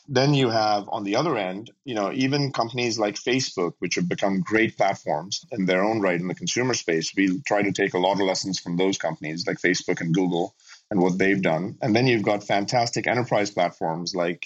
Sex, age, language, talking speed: male, 30-49, English, 220 wpm